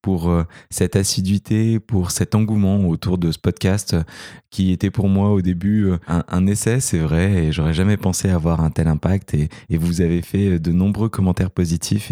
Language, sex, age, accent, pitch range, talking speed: French, male, 20-39, French, 90-110 Hz, 190 wpm